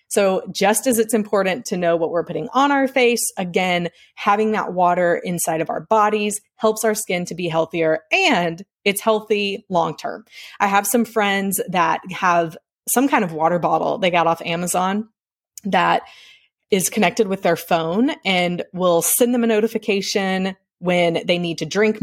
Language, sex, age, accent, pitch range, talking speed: English, female, 20-39, American, 175-220 Hz, 170 wpm